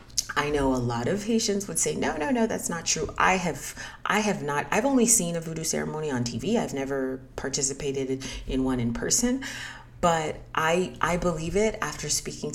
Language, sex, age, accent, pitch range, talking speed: English, female, 30-49, American, 130-160 Hz, 195 wpm